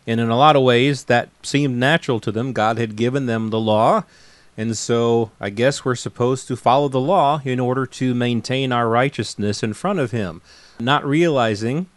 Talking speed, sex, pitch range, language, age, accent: 195 wpm, male, 115-140 Hz, English, 40-59, American